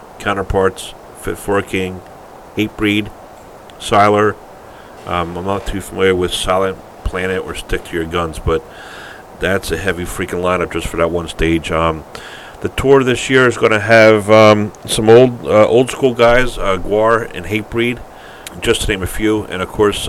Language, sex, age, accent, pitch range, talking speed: English, male, 40-59, American, 85-100 Hz, 170 wpm